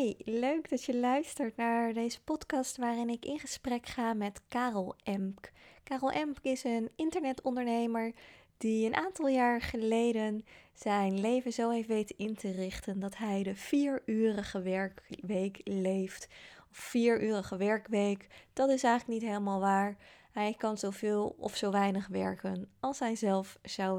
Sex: female